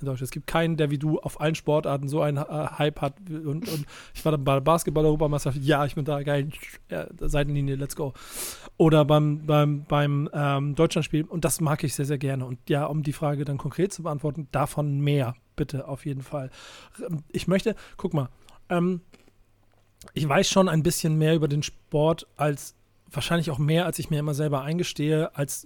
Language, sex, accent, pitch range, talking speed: German, male, German, 135-165 Hz, 200 wpm